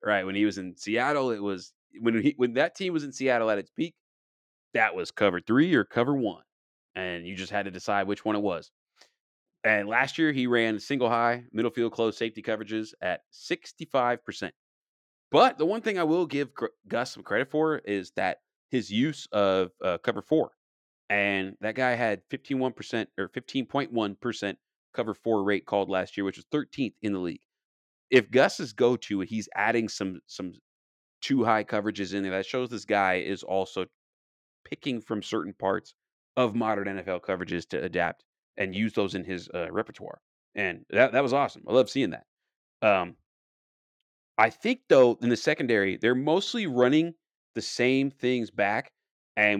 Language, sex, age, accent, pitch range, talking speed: English, male, 30-49, American, 95-125 Hz, 185 wpm